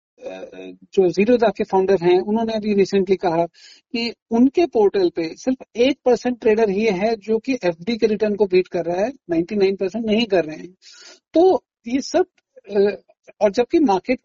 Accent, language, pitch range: native, Hindi, 190-255 Hz